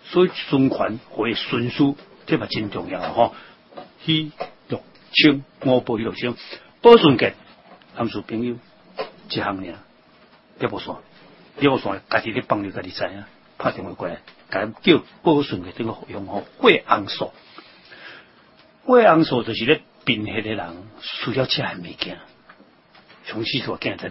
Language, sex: Chinese, male